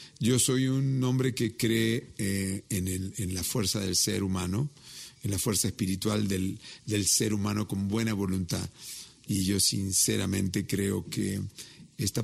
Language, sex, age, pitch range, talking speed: Spanish, male, 50-69, 95-125 Hz, 155 wpm